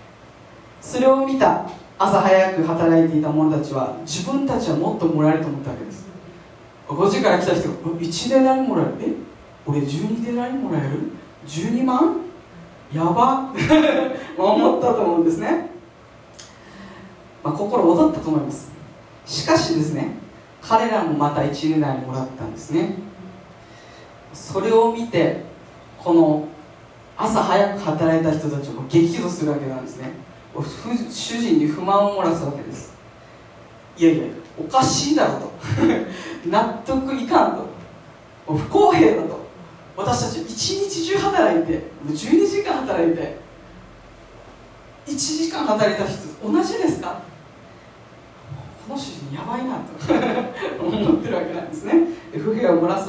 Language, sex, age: Japanese, female, 40-59